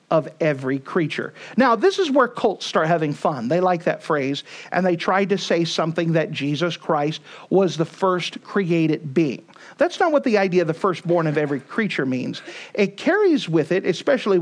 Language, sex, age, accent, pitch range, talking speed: English, male, 50-69, American, 165-230 Hz, 190 wpm